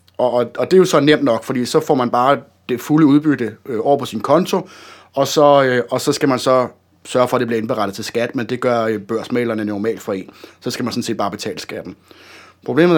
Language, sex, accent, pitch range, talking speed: Danish, male, native, 115-145 Hz, 230 wpm